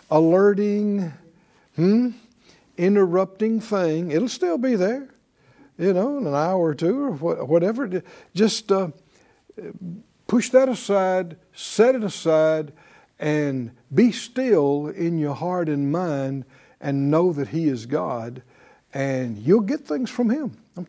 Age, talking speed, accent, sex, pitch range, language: 60-79, 130 wpm, American, male, 150-200 Hz, English